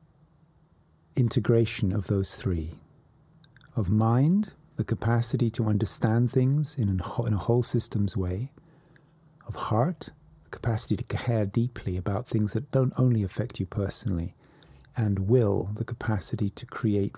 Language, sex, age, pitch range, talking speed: English, male, 40-59, 105-135 Hz, 130 wpm